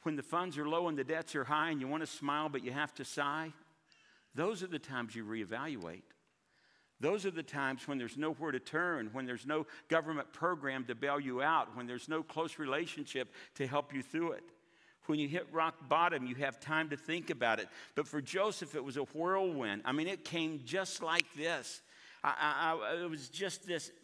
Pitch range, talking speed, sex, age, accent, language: 145-175 Hz, 210 wpm, male, 60-79, American, English